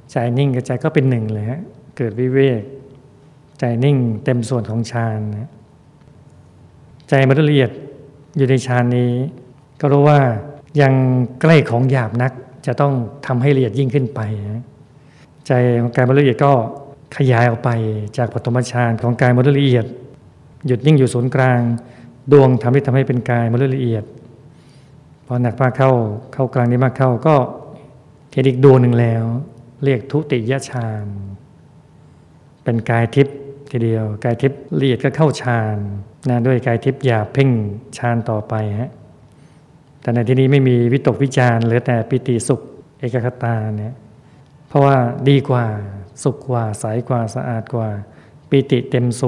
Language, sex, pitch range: Thai, male, 120-140 Hz